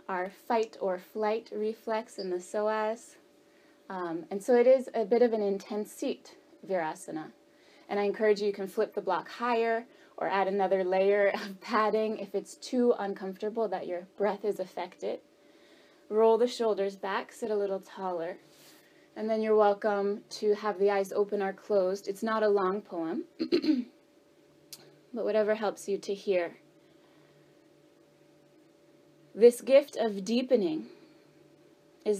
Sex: female